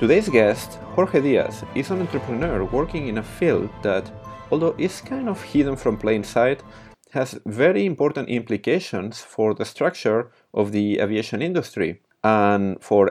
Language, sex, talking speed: English, male, 150 wpm